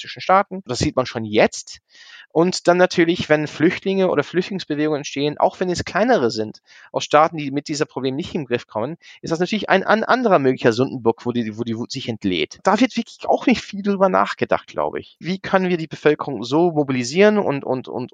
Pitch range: 130-170 Hz